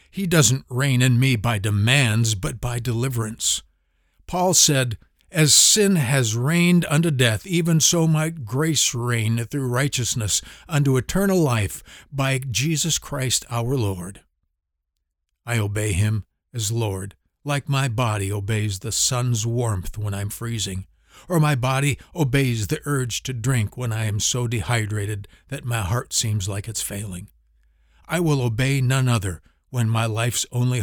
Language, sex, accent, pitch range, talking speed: English, male, American, 105-150 Hz, 150 wpm